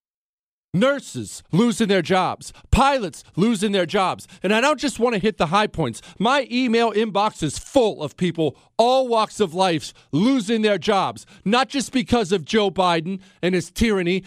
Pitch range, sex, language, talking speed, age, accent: 190-265 Hz, male, English, 175 wpm, 40-59, American